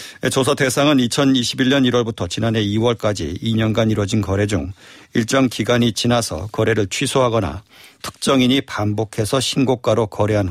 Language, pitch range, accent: Korean, 105-130 Hz, native